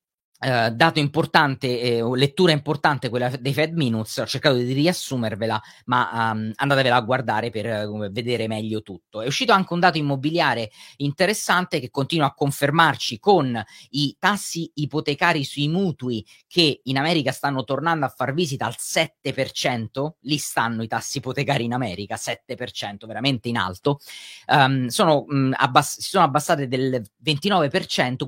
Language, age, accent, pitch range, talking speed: Italian, 30-49, native, 120-155 Hz, 150 wpm